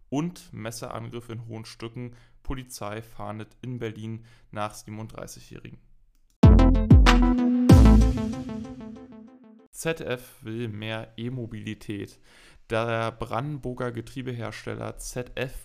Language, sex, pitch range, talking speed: German, male, 110-125 Hz, 75 wpm